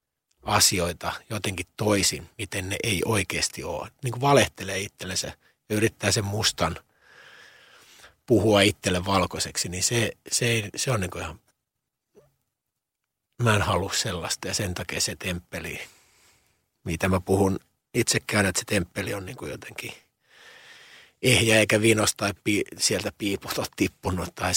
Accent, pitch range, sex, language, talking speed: native, 90-115 Hz, male, Finnish, 135 wpm